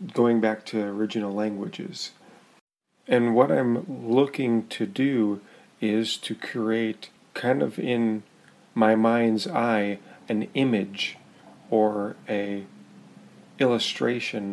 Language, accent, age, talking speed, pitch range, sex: English, American, 40-59, 105 wpm, 105-120 Hz, male